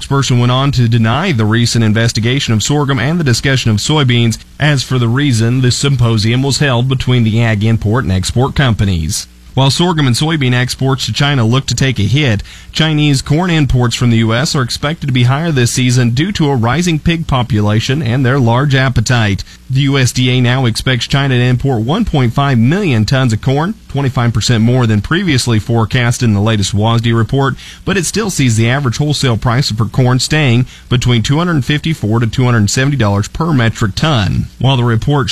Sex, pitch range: male, 115-140 Hz